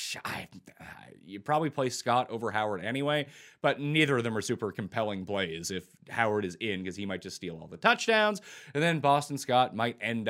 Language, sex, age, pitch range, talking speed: English, male, 30-49, 100-140 Hz, 190 wpm